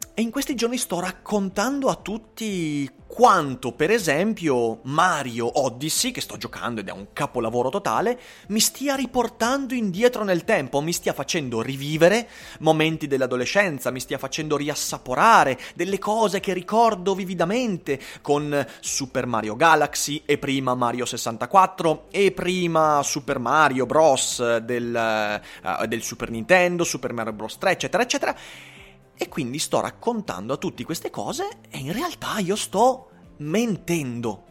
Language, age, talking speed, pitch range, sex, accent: Italian, 30-49, 135 wpm, 125-205 Hz, male, native